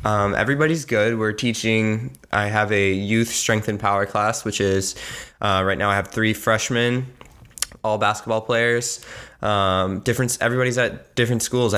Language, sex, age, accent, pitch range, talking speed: English, male, 20-39, American, 95-115 Hz, 160 wpm